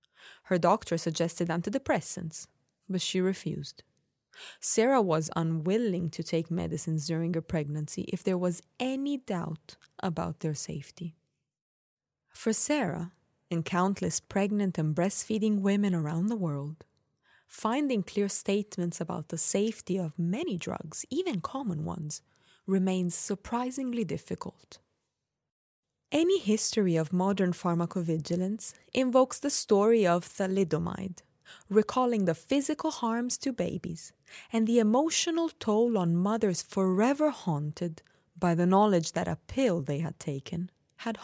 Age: 20-39